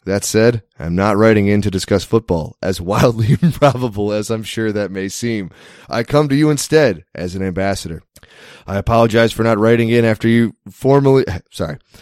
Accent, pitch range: American, 100-125 Hz